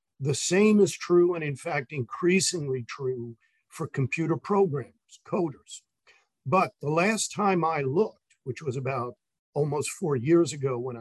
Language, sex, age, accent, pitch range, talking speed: English, male, 50-69, American, 135-180 Hz, 145 wpm